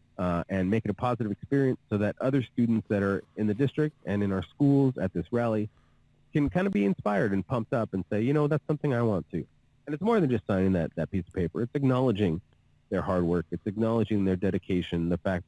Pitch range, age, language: 90-120 Hz, 40-59, English